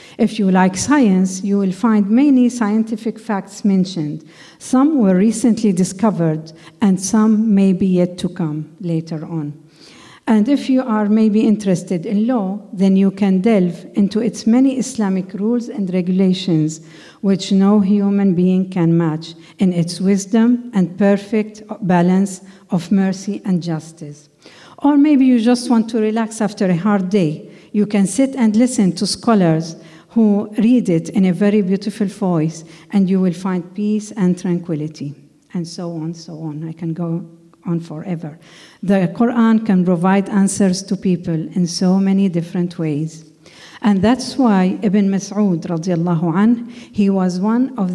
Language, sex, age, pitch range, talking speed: English, female, 50-69, 175-215 Hz, 155 wpm